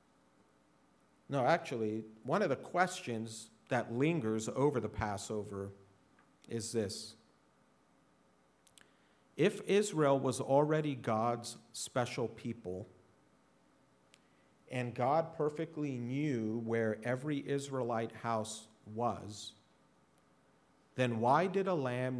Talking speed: 90 wpm